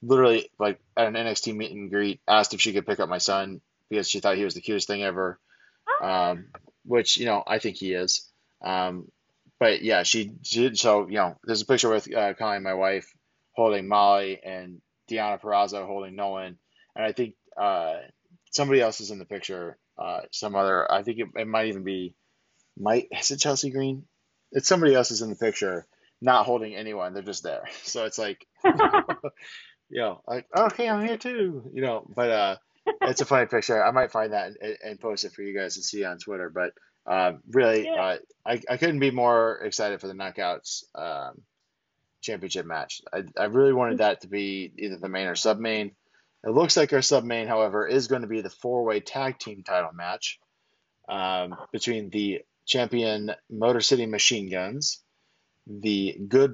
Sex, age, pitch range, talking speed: male, 20-39, 95-130 Hz, 195 wpm